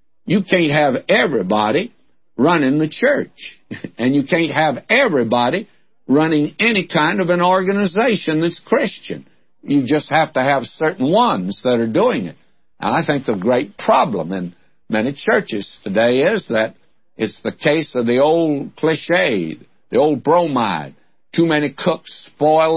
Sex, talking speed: male, 150 wpm